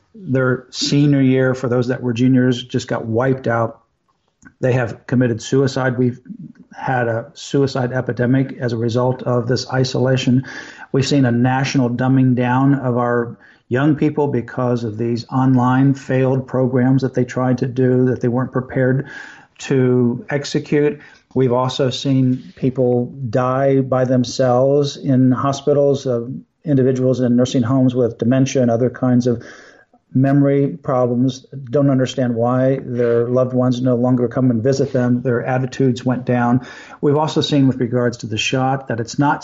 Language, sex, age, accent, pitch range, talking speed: English, male, 50-69, American, 125-135 Hz, 155 wpm